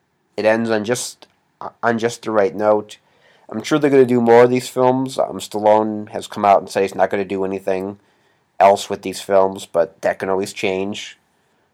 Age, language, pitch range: 30-49, English, 100-120 Hz